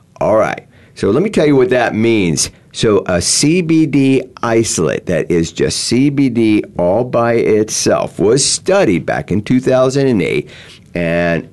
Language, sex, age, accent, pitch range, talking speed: English, male, 50-69, American, 85-125 Hz, 140 wpm